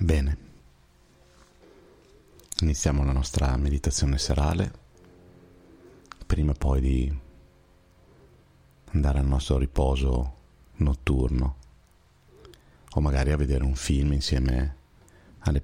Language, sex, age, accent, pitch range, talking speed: Italian, male, 40-59, native, 70-85 Hz, 85 wpm